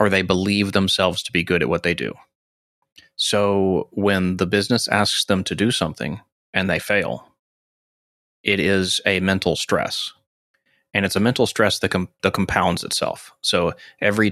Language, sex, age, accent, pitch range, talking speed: English, male, 30-49, American, 90-100 Hz, 170 wpm